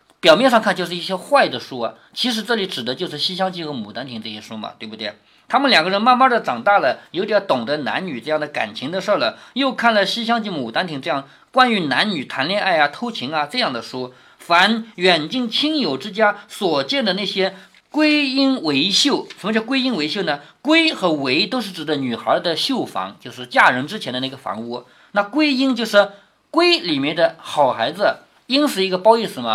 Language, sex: Chinese, male